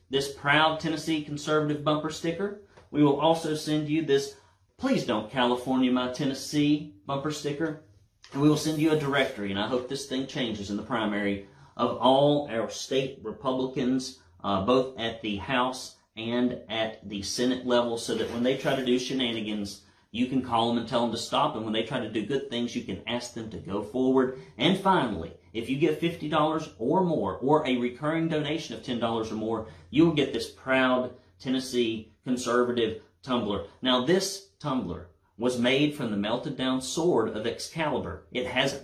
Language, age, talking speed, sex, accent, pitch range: English, 40-59, 185 wpm, male, American, 115-145 Hz